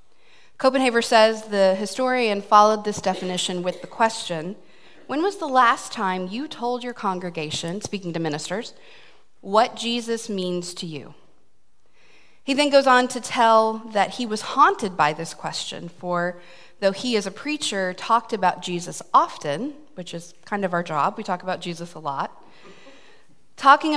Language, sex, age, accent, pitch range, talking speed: English, female, 30-49, American, 180-235 Hz, 160 wpm